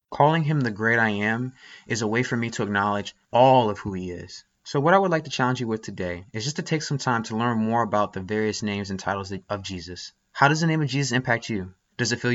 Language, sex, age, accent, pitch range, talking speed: English, male, 20-39, American, 105-130 Hz, 270 wpm